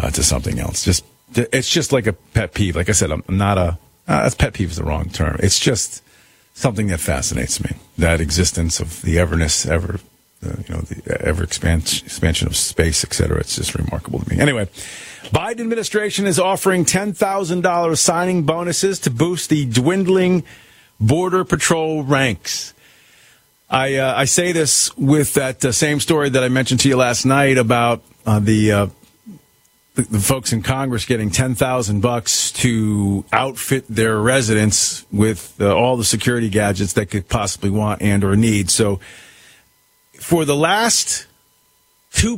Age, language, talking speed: 40-59, English, 165 wpm